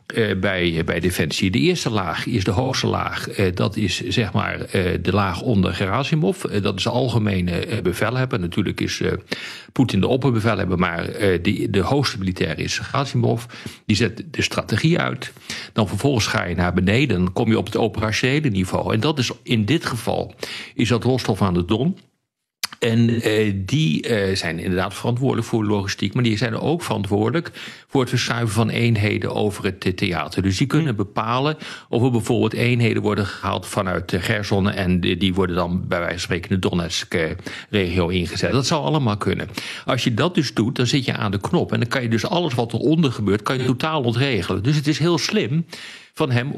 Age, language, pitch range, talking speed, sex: 50-69, Dutch, 100-130 Hz, 200 wpm, male